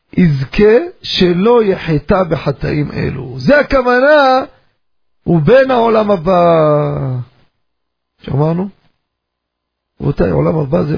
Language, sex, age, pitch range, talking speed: Hebrew, male, 40-59, 135-200 Hz, 80 wpm